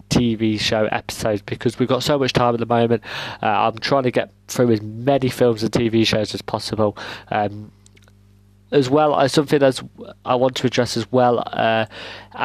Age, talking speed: 20-39, 190 wpm